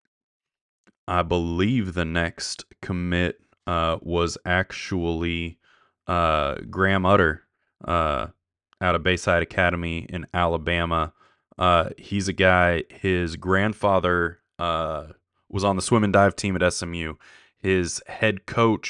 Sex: male